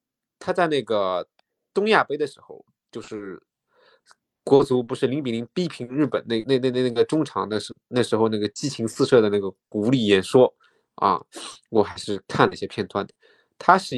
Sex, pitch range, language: male, 105-140 Hz, Chinese